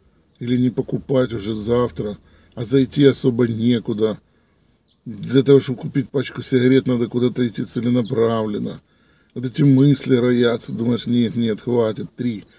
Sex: male